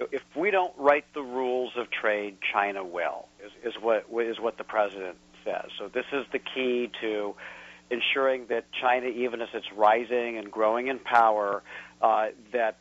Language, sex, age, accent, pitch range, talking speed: English, male, 50-69, American, 105-135 Hz, 175 wpm